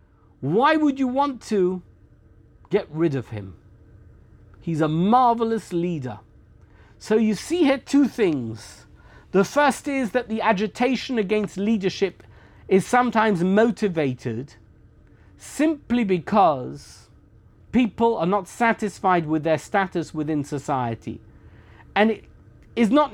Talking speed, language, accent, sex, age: 115 wpm, English, British, male, 50-69